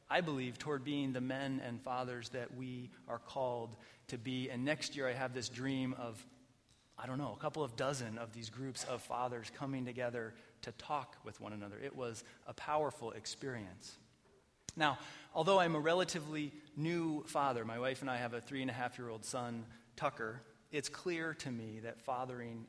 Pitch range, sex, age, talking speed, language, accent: 120-150 Hz, male, 30-49, 180 wpm, English, American